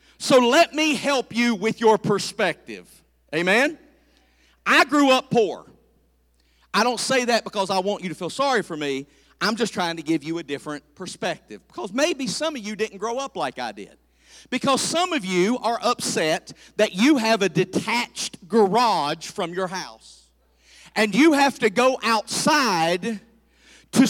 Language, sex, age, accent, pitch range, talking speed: English, male, 40-59, American, 190-275 Hz, 170 wpm